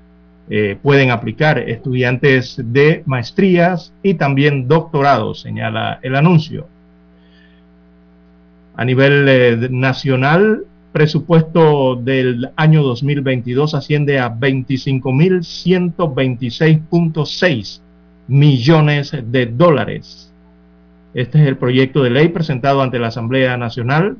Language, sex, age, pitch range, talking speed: Spanish, male, 40-59, 120-145 Hz, 90 wpm